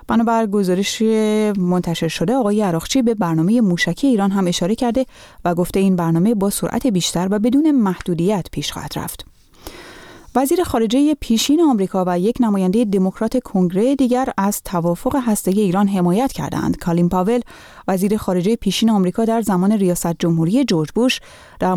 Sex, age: female, 30-49